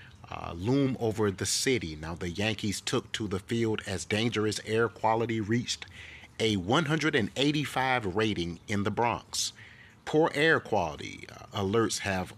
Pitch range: 95-120 Hz